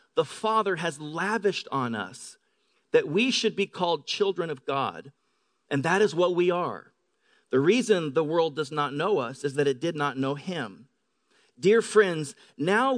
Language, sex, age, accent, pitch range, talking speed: English, male, 40-59, American, 180-245 Hz, 175 wpm